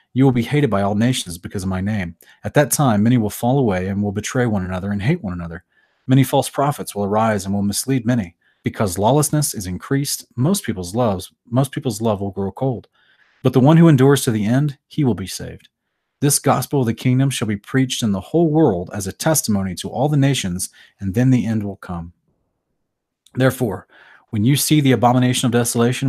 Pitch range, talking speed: 105-130 Hz, 215 wpm